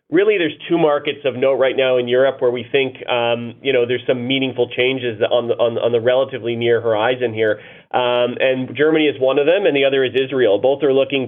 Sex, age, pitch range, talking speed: male, 30-49, 115-130 Hz, 225 wpm